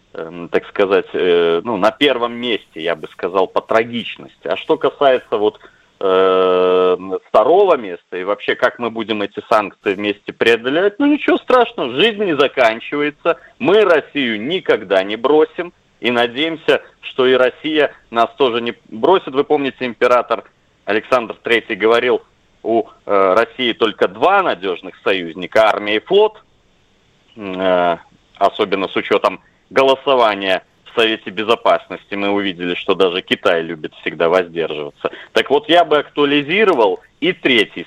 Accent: native